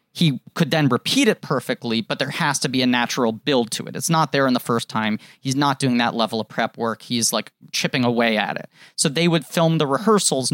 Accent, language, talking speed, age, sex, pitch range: American, English, 245 wpm, 30-49, male, 120-160 Hz